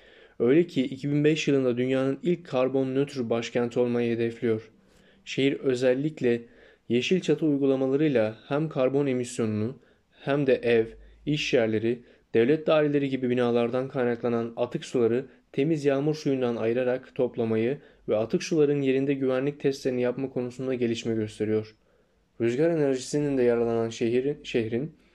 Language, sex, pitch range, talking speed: Turkish, male, 115-135 Hz, 120 wpm